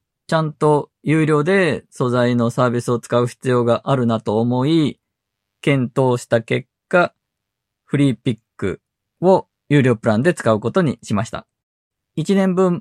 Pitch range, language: 115-155 Hz, Japanese